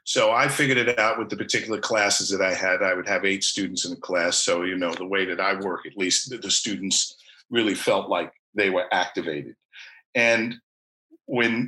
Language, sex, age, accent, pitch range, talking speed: English, male, 50-69, American, 95-110 Hz, 210 wpm